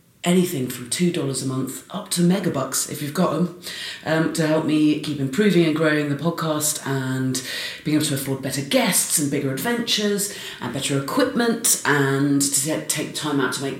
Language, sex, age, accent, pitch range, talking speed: English, female, 30-49, British, 130-160 Hz, 185 wpm